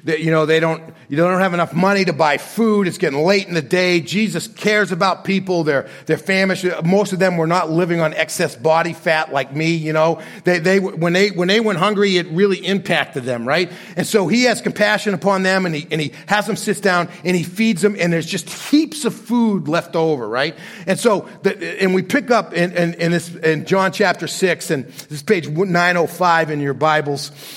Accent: American